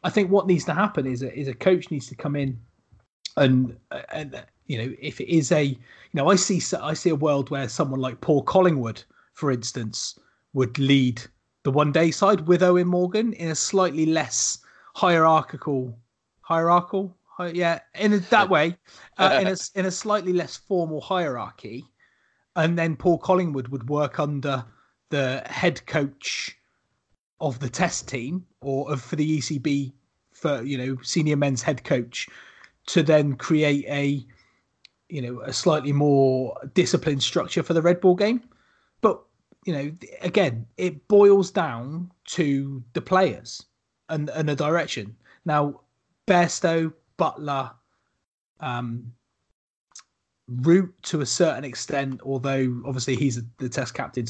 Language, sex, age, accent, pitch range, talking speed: English, male, 30-49, British, 130-175 Hz, 150 wpm